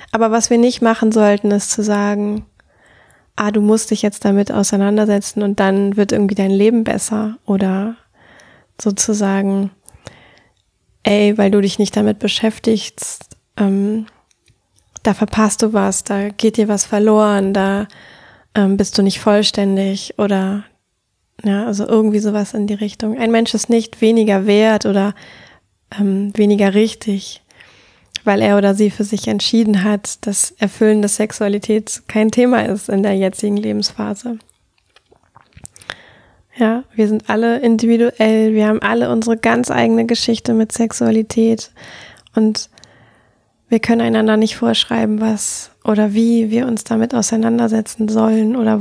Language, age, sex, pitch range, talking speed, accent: German, 20-39, female, 205-225 Hz, 140 wpm, German